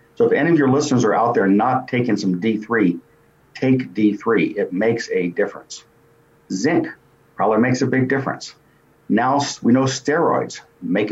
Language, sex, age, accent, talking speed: English, male, 60-79, American, 160 wpm